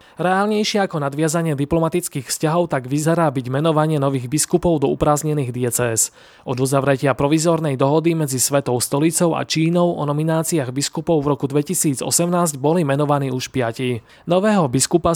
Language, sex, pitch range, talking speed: Slovak, male, 135-165 Hz, 140 wpm